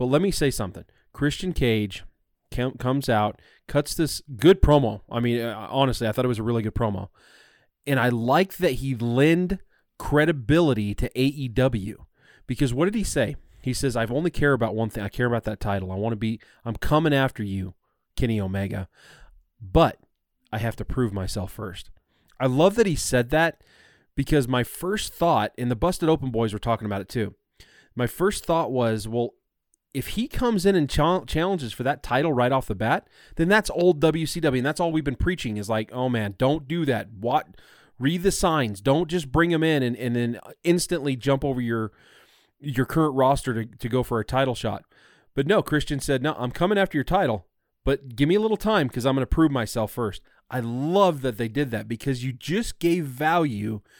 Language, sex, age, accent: English, male, 20-39, American